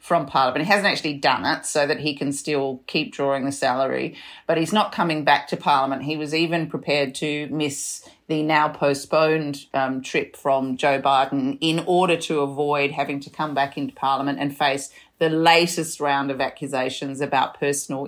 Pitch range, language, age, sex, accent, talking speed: 140-155 Hz, English, 40-59, female, Australian, 185 wpm